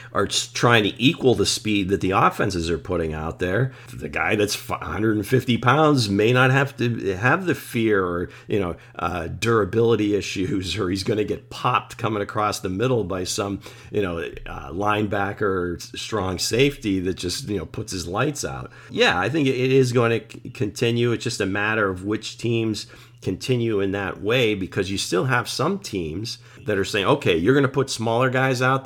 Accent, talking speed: American, 195 wpm